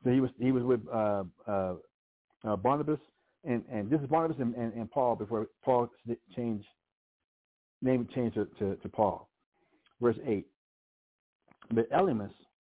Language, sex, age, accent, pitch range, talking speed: English, male, 60-79, American, 110-135 Hz, 140 wpm